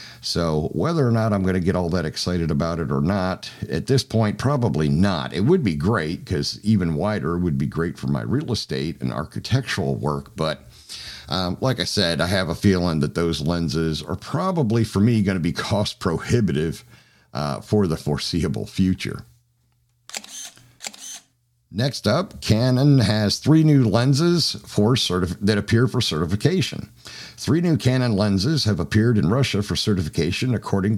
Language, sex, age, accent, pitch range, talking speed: English, male, 50-69, American, 85-120 Hz, 170 wpm